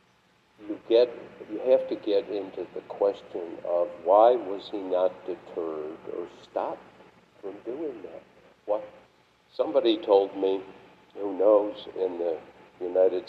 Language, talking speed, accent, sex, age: English, 130 wpm, American, male, 60-79